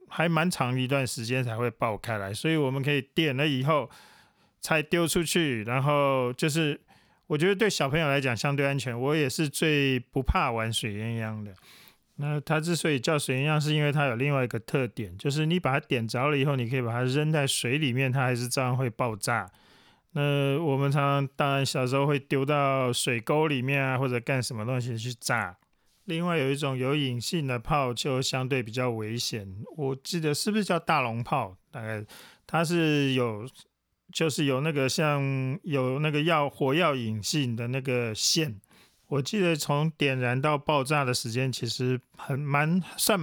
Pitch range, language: 125-150 Hz, Chinese